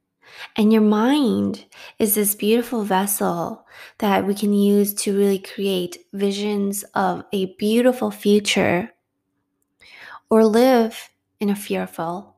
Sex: female